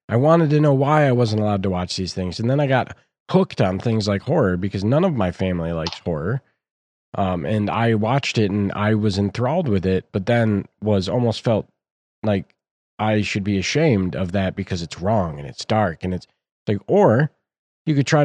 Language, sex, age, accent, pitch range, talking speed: English, male, 20-39, American, 95-125 Hz, 210 wpm